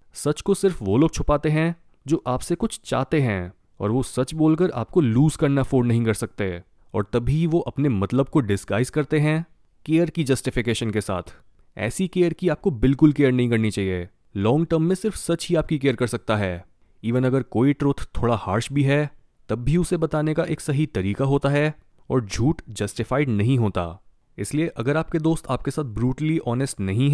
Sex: male